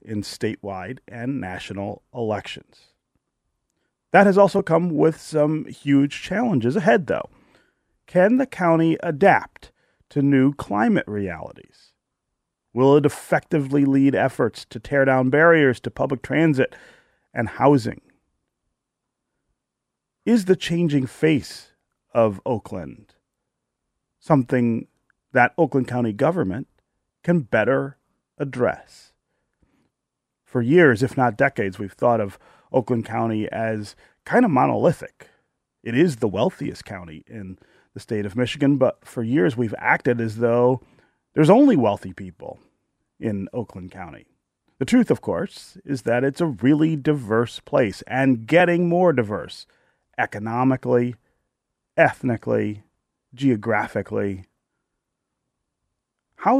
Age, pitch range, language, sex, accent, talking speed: 40-59, 110-150 Hz, English, male, American, 115 wpm